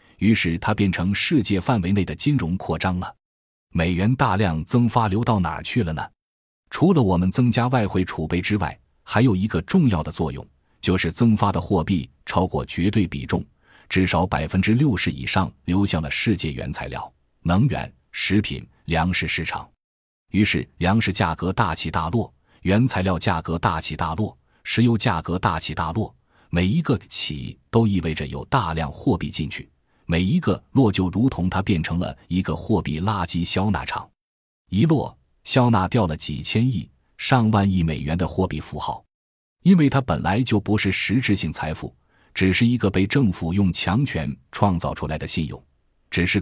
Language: Chinese